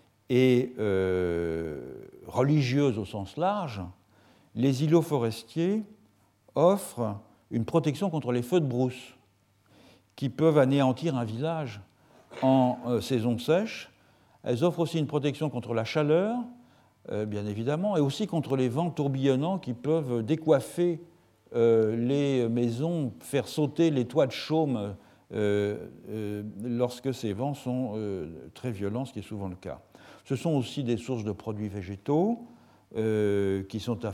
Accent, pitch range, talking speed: French, 105-150 Hz, 145 wpm